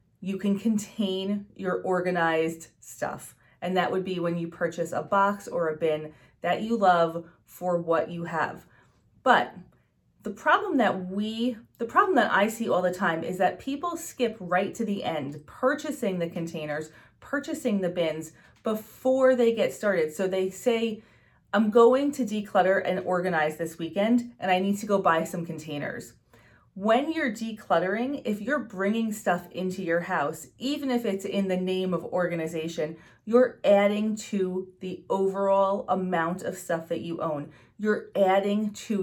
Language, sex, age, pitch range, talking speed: English, female, 30-49, 170-225 Hz, 165 wpm